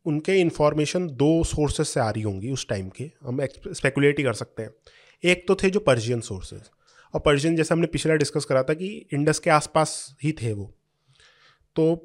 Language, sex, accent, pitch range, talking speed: Hindi, male, native, 135-175 Hz, 195 wpm